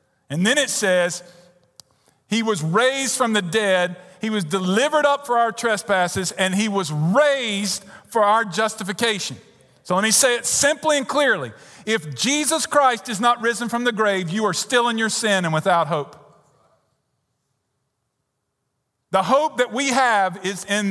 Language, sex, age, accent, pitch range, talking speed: English, male, 50-69, American, 135-215 Hz, 165 wpm